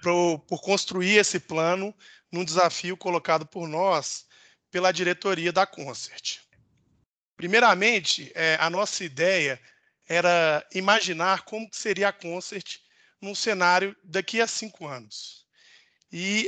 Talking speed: 110 wpm